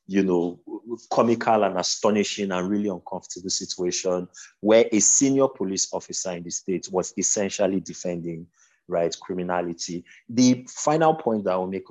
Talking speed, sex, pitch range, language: 145 wpm, male, 90-115 Hz, English